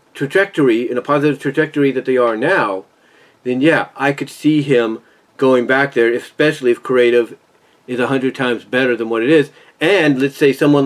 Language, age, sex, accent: English, 40-59, male, American